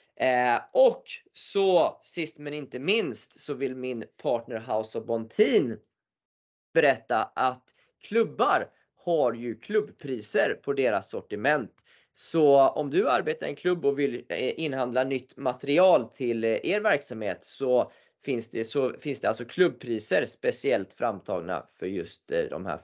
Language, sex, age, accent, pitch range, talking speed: Swedish, male, 20-39, native, 120-175 Hz, 135 wpm